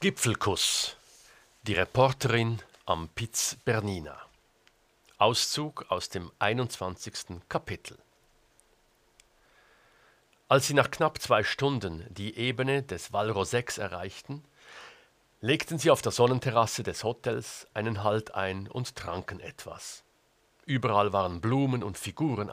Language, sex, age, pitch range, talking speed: German, male, 50-69, 100-125 Hz, 110 wpm